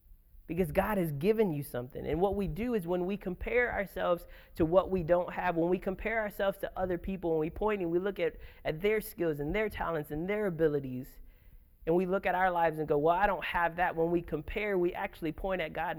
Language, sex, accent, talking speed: English, male, American, 240 wpm